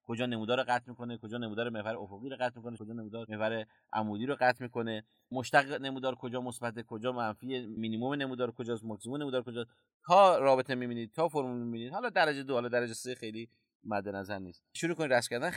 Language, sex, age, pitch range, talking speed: Persian, male, 30-49, 105-135 Hz, 200 wpm